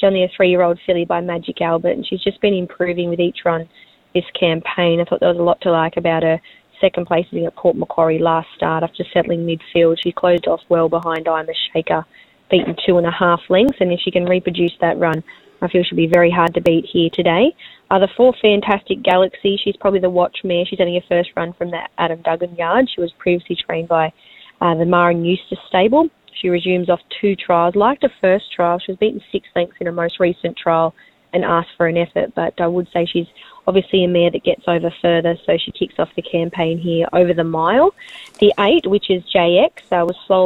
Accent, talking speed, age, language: Australian, 220 wpm, 20-39, English